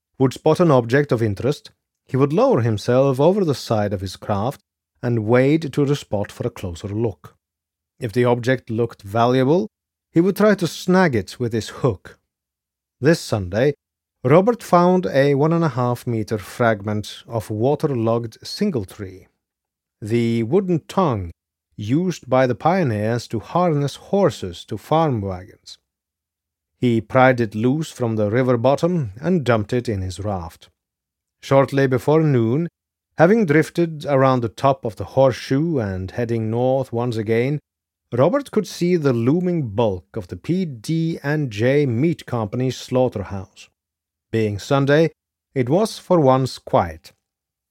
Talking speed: 150 wpm